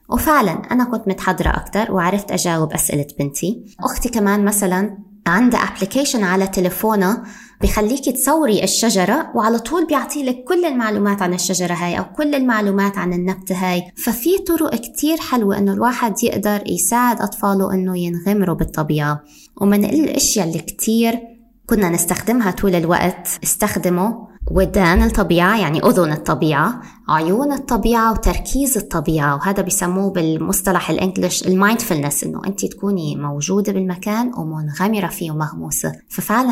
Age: 20-39